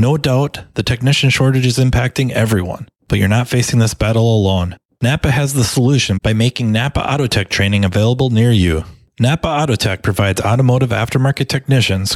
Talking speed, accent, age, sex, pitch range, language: 170 wpm, American, 30-49, male, 110-135 Hz, English